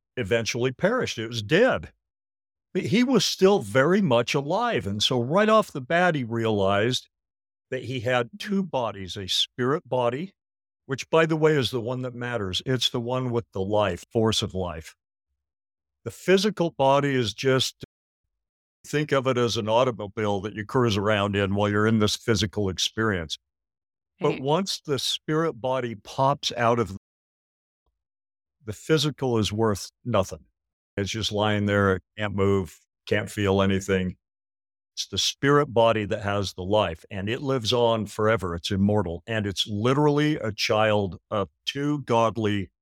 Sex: male